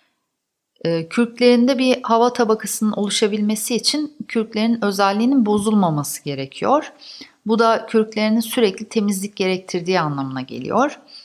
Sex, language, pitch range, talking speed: female, Turkish, 175-225 Hz, 95 wpm